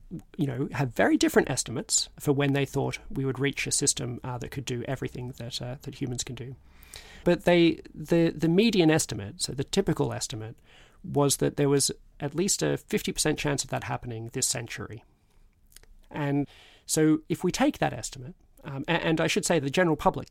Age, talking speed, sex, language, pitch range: 30-49, 195 wpm, male, English, 120-165 Hz